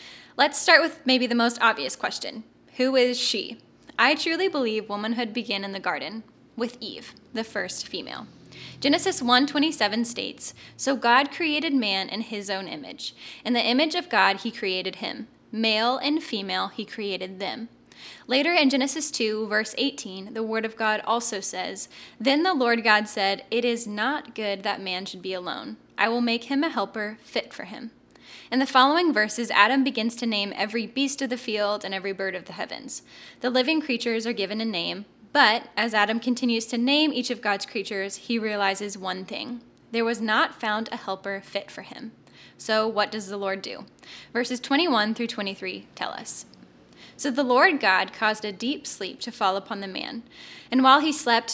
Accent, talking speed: American, 190 wpm